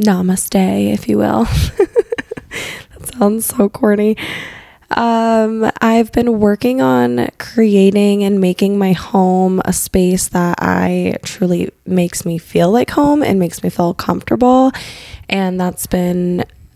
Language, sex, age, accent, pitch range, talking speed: English, female, 20-39, American, 180-210 Hz, 130 wpm